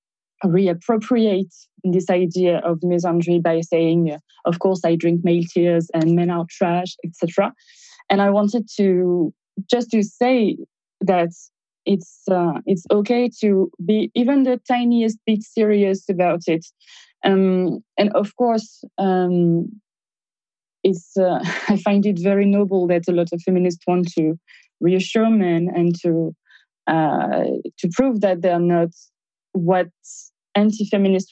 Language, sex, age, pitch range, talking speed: Dutch, female, 20-39, 170-205 Hz, 135 wpm